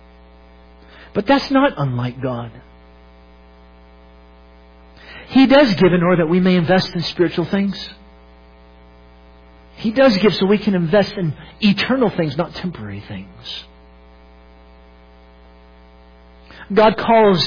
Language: English